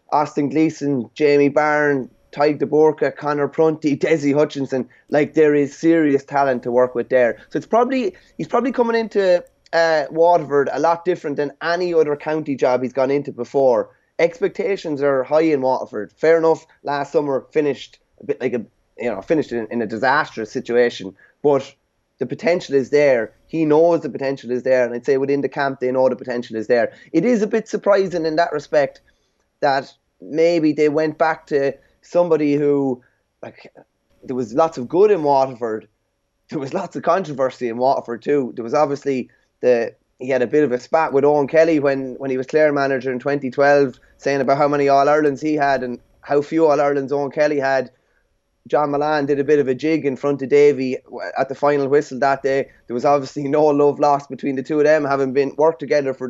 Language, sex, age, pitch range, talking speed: English, male, 20-39, 135-155 Hz, 200 wpm